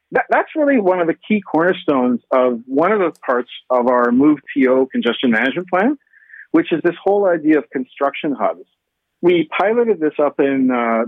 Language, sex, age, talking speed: English, male, 50-69, 180 wpm